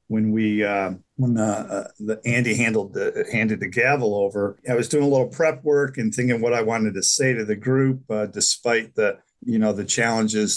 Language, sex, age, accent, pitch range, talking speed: English, male, 50-69, American, 110-140 Hz, 220 wpm